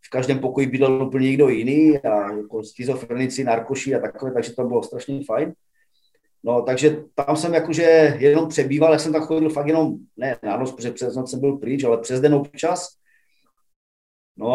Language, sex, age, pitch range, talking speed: Slovak, male, 30-49, 135-160 Hz, 180 wpm